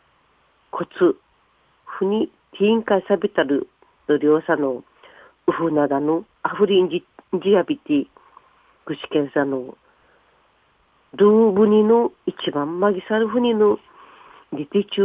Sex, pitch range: female, 160-235 Hz